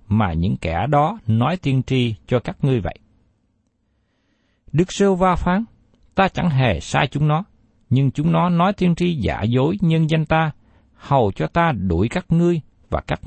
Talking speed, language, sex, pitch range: 180 wpm, Vietnamese, male, 105-170 Hz